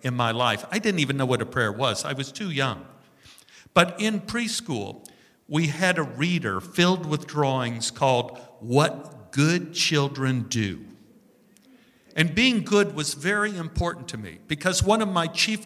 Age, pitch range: 50-69, 130-185 Hz